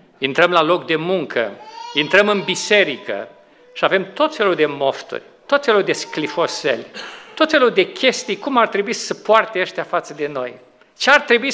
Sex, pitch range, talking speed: male, 215-310 Hz, 175 wpm